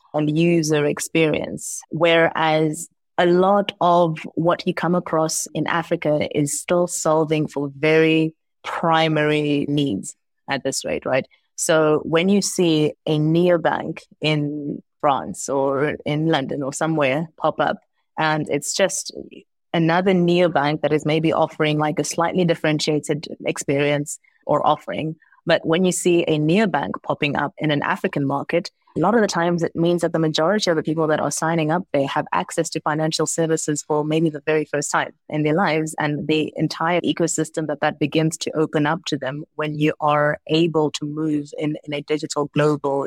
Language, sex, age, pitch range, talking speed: English, female, 20-39, 150-170 Hz, 170 wpm